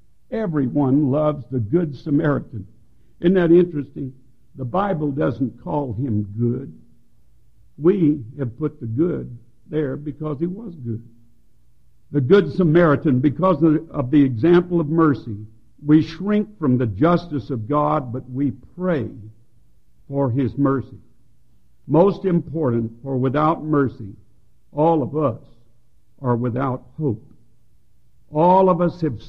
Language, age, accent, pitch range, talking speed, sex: English, 60-79, American, 120-155 Hz, 125 wpm, male